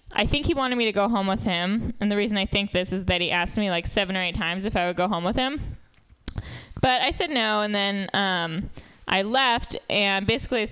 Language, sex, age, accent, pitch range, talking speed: English, female, 10-29, American, 185-240 Hz, 250 wpm